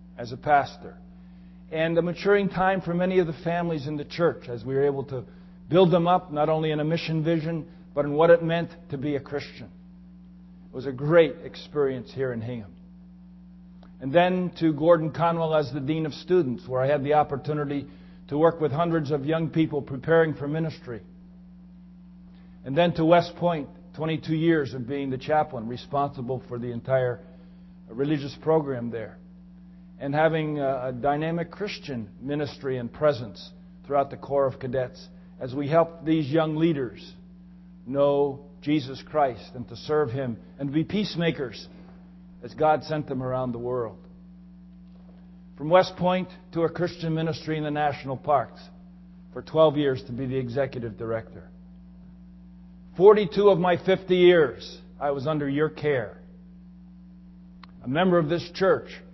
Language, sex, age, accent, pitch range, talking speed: English, male, 50-69, American, 140-180 Hz, 160 wpm